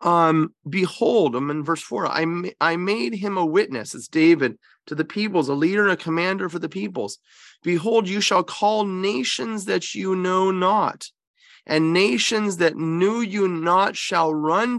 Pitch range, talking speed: 160-215 Hz, 175 wpm